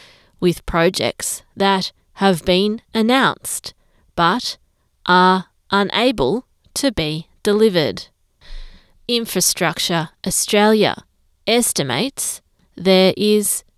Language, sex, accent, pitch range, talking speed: English, female, Australian, 175-215 Hz, 75 wpm